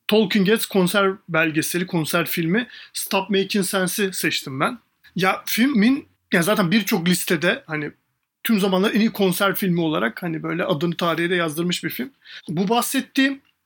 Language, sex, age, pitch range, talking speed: Turkish, male, 40-59, 170-210 Hz, 145 wpm